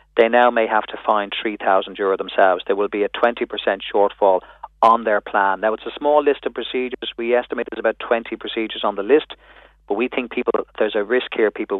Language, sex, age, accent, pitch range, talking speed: English, male, 40-59, Irish, 110-135 Hz, 220 wpm